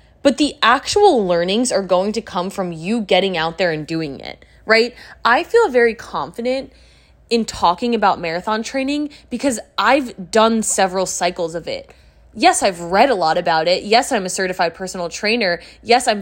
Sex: female